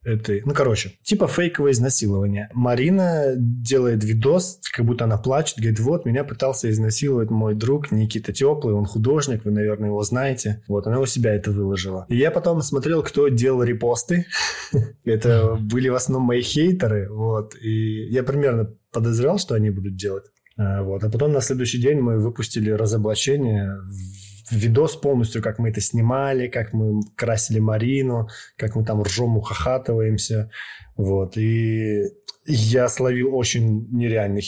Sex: male